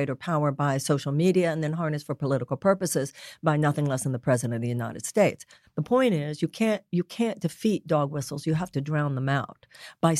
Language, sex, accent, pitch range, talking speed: English, female, American, 145-180 Hz, 225 wpm